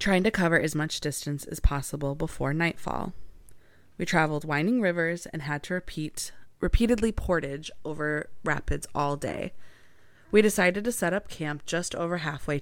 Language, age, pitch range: English, 20-39, 150-190 Hz